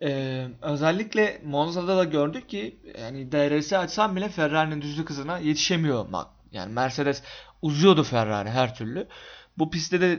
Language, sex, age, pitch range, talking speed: Turkish, male, 30-49, 140-180 Hz, 140 wpm